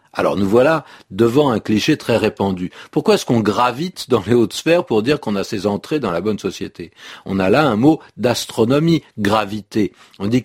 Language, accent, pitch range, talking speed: French, French, 105-155 Hz, 200 wpm